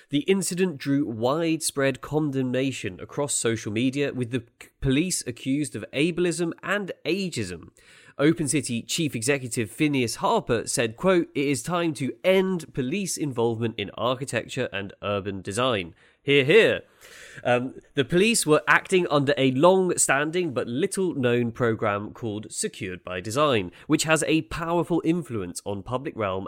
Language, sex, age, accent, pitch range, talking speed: English, male, 30-49, British, 115-165 Hz, 140 wpm